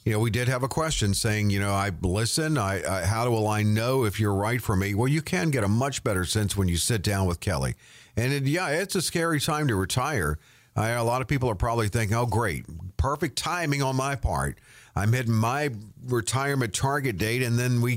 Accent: American